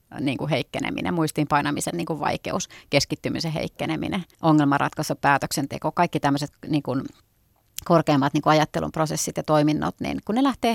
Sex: female